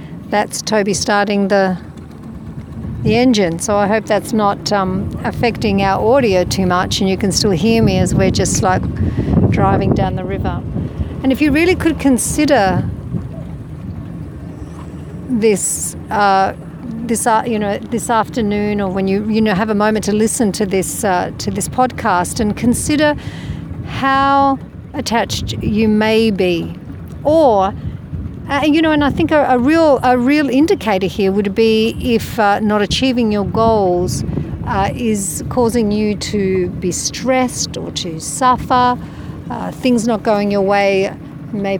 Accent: Australian